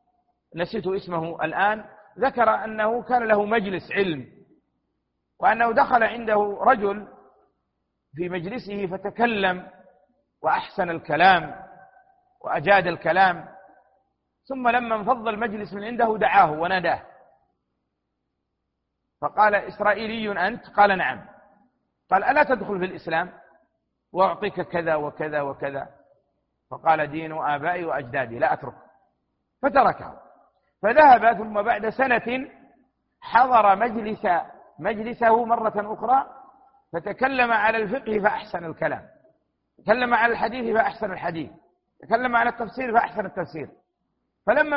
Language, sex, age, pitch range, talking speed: Arabic, male, 50-69, 185-240 Hz, 100 wpm